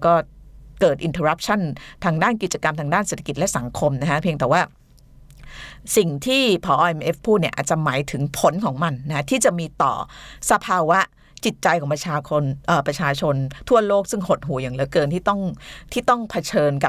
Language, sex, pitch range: Thai, female, 145-180 Hz